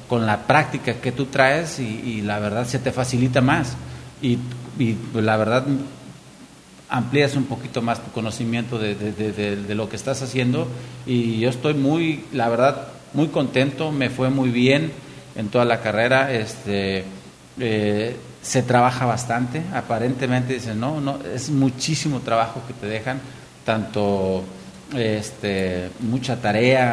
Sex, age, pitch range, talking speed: male, 40-59, 115-135 Hz, 150 wpm